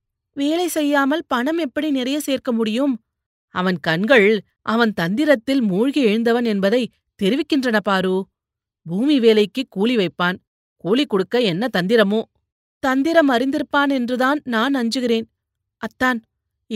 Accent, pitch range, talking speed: native, 175-235 Hz, 105 wpm